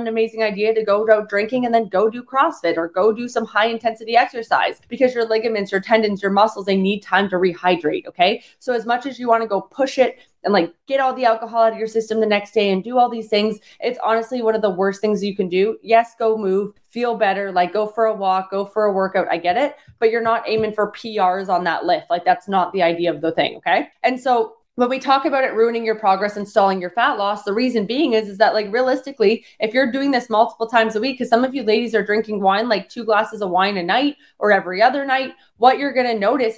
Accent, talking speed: American, 260 wpm